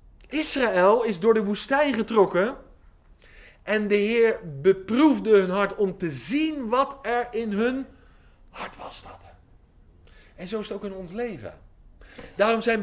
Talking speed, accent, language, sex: 150 wpm, Dutch, Dutch, male